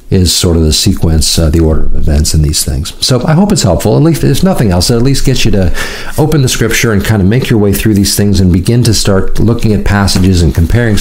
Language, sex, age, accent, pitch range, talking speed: English, male, 50-69, American, 85-110 Hz, 275 wpm